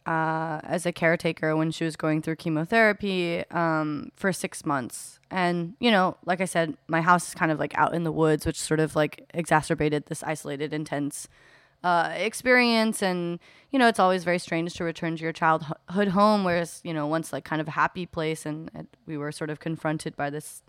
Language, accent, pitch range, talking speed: English, American, 155-175 Hz, 210 wpm